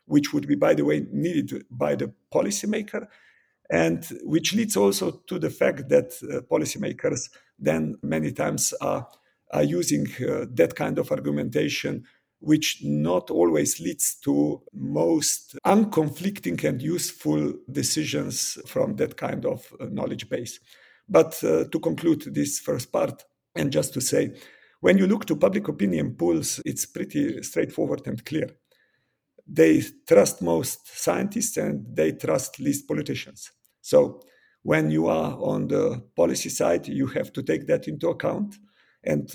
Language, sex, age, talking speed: English, male, 50-69, 145 wpm